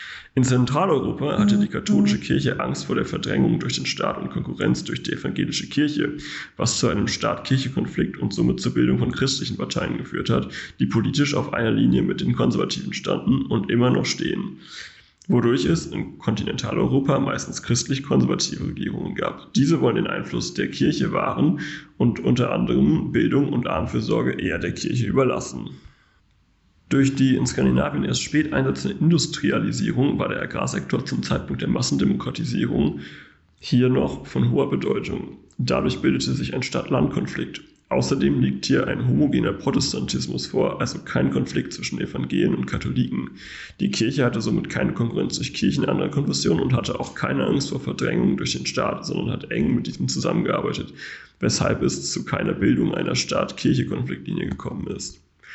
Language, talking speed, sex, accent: German, 155 wpm, male, German